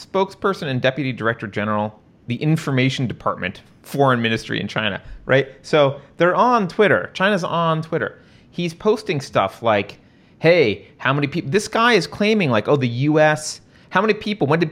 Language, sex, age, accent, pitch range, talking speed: English, male, 30-49, American, 110-160 Hz, 165 wpm